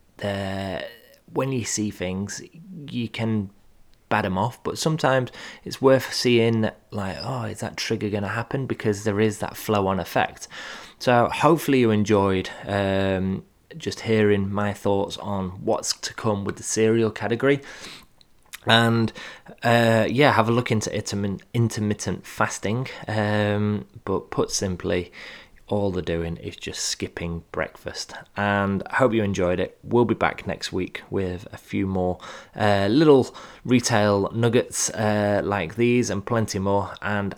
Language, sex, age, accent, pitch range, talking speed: English, male, 20-39, British, 95-115 Hz, 150 wpm